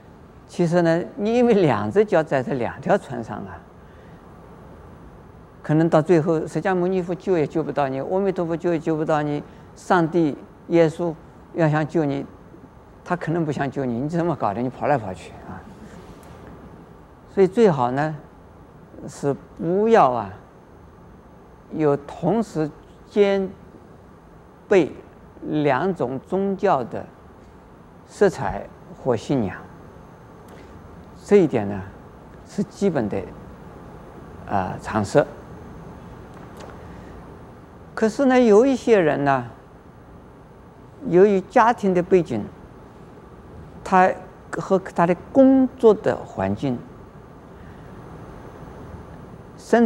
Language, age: Chinese, 50-69